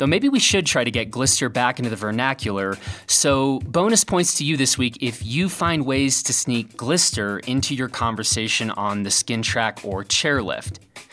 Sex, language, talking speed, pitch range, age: male, English, 190 wpm, 110-140 Hz, 30-49